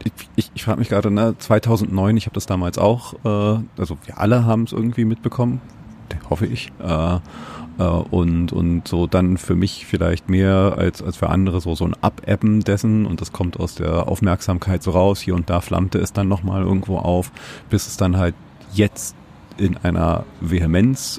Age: 40-59